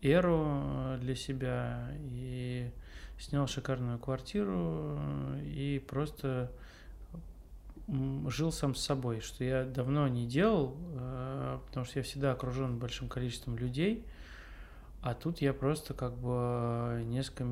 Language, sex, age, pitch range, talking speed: Russian, male, 20-39, 120-140 Hz, 115 wpm